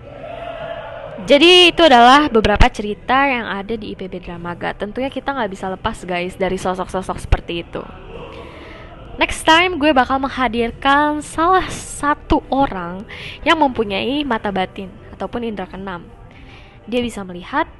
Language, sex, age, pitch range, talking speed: Indonesian, female, 10-29, 195-260 Hz, 130 wpm